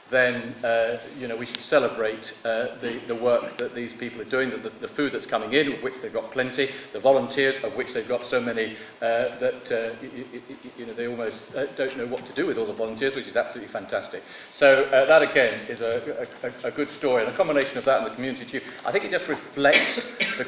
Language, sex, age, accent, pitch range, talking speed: English, male, 40-59, British, 120-135 Hz, 225 wpm